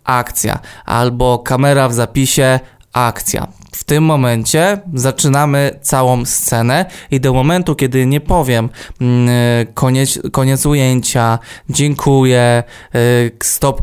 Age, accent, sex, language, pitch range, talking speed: 20-39, native, male, Polish, 125-145 Hz, 100 wpm